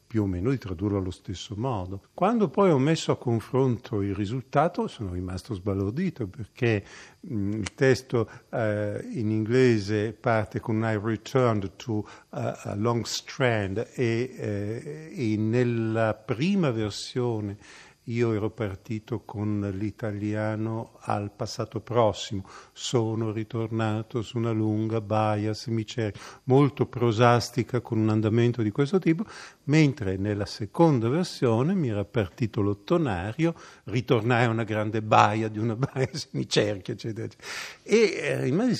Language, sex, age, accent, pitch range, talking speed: Italian, male, 50-69, native, 105-125 Hz, 130 wpm